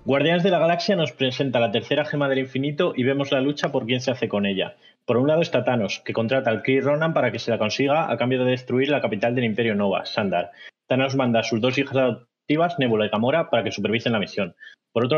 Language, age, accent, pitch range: Spanish, 20-39, Spanish, 120-145 Hz